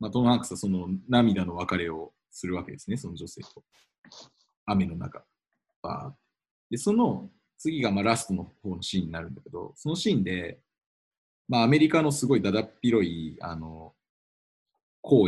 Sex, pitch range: male, 90-125 Hz